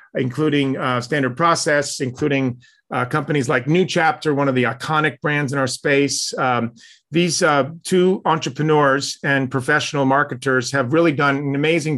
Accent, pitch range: American, 140-165 Hz